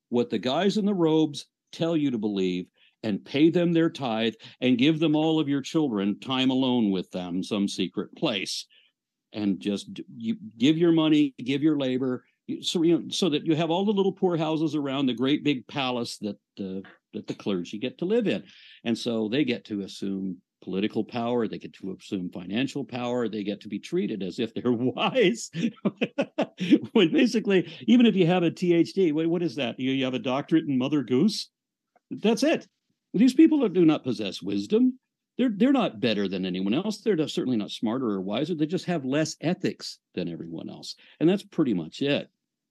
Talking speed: 195 wpm